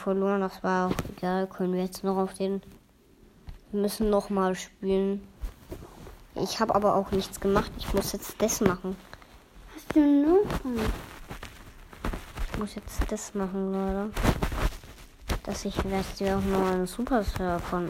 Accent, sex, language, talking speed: German, male, German, 145 wpm